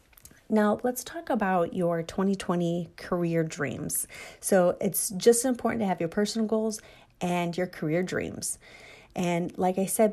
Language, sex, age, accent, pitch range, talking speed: English, female, 30-49, American, 165-200 Hz, 150 wpm